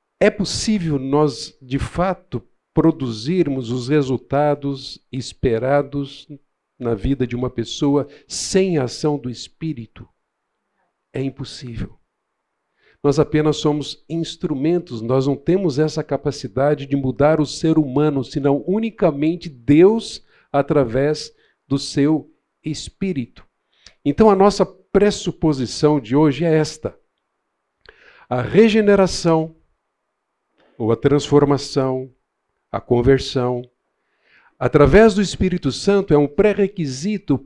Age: 50-69